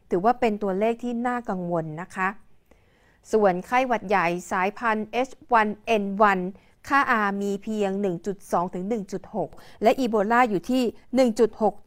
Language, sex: Thai, female